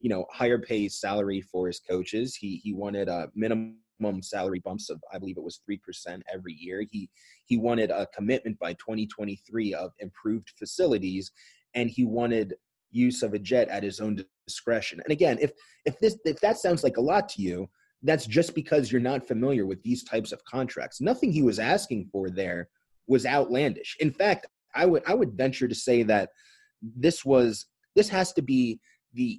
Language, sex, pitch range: English, male, 110-165 Hz